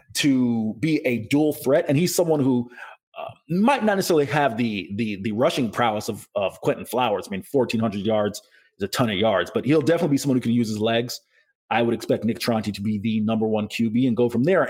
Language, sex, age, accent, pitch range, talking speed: English, male, 30-49, American, 110-140 Hz, 235 wpm